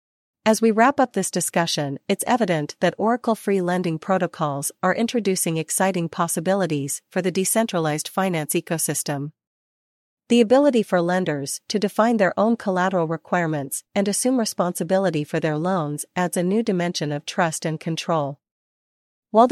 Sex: female